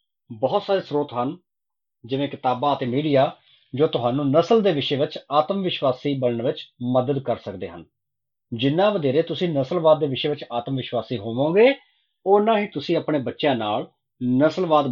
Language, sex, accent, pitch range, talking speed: English, male, Indian, 125-165 Hz, 155 wpm